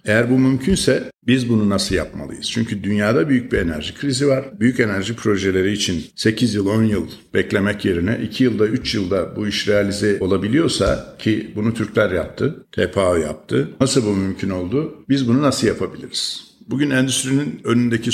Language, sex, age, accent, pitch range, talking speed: Turkish, male, 50-69, native, 95-115 Hz, 160 wpm